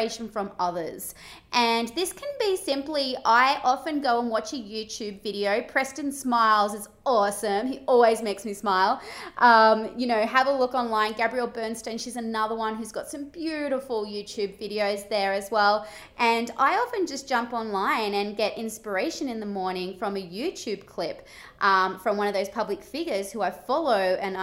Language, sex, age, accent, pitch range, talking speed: English, female, 20-39, Australian, 205-275 Hz, 175 wpm